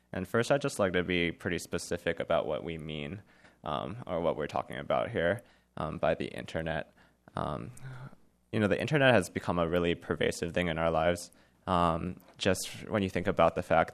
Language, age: English, 20-39